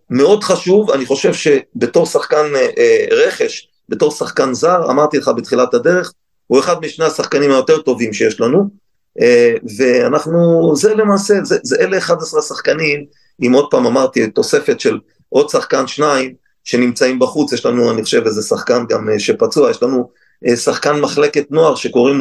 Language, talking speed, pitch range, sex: Hebrew, 155 wpm, 130-200 Hz, male